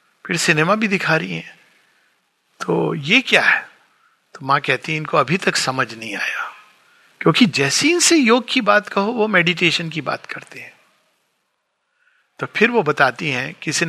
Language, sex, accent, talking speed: Hindi, male, native, 170 wpm